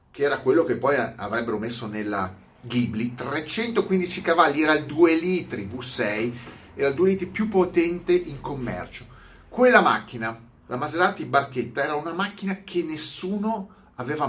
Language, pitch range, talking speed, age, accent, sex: Italian, 120-165 Hz, 145 wpm, 40-59, native, male